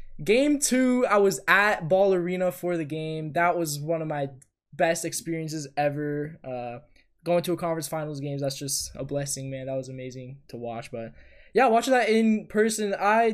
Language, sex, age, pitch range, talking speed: English, male, 20-39, 140-185 Hz, 190 wpm